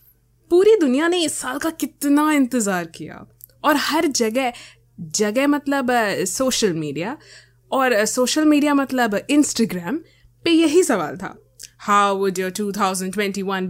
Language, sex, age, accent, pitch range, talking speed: English, female, 20-39, Indian, 190-310 Hz, 50 wpm